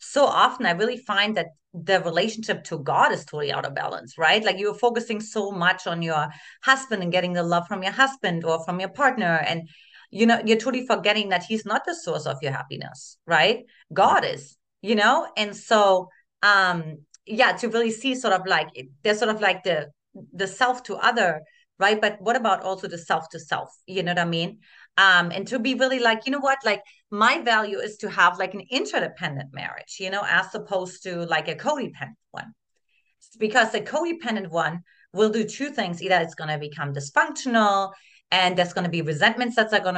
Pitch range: 170-220 Hz